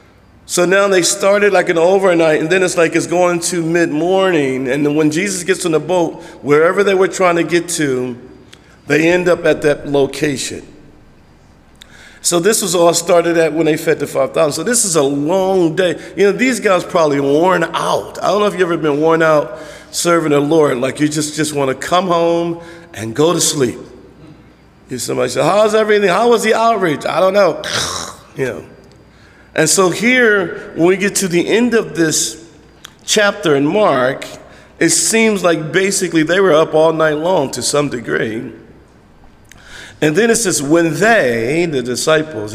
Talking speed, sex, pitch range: 185 wpm, male, 145-180 Hz